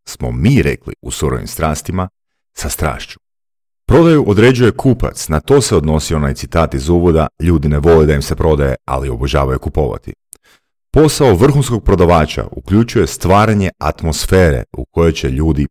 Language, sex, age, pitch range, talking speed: Croatian, male, 40-59, 75-105 Hz, 150 wpm